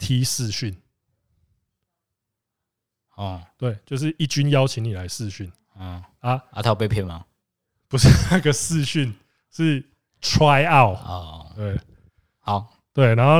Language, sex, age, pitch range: Chinese, male, 20-39, 105-140 Hz